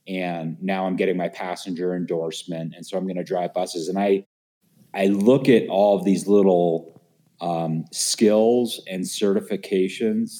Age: 30-49